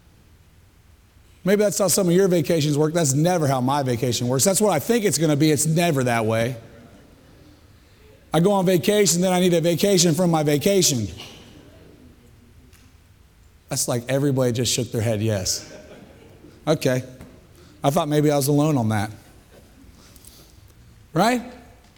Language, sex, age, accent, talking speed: English, male, 30-49, American, 155 wpm